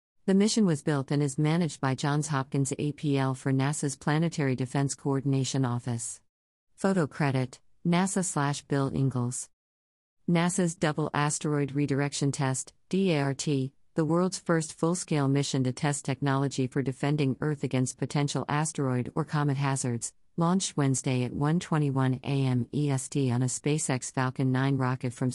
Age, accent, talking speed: 50-69, American, 140 wpm